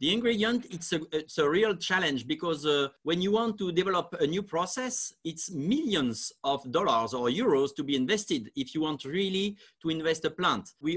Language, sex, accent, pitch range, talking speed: English, male, French, 155-205 Hz, 195 wpm